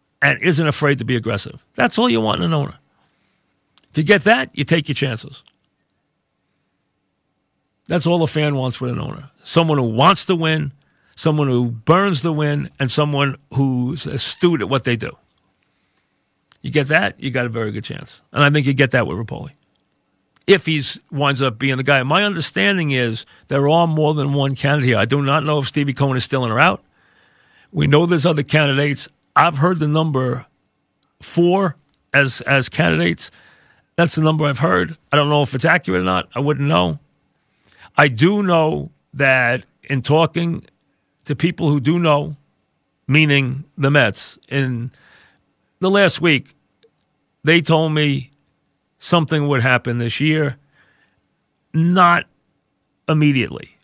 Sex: male